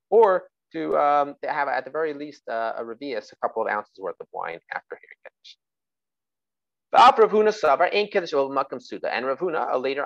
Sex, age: male, 30-49